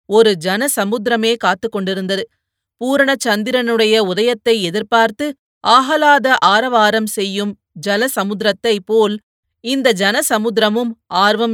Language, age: Tamil, 30-49